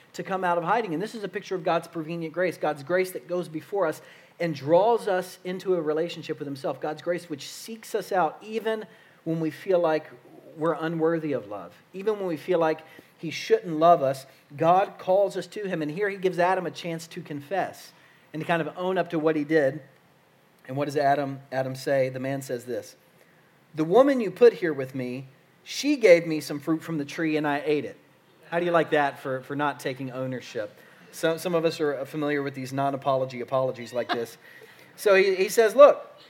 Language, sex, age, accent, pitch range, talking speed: English, male, 40-59, American, 150-190 Hz, 220 wpm